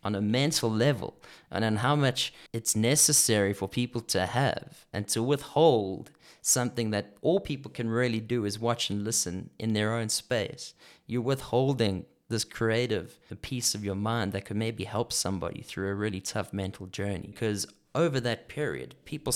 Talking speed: 175 wpm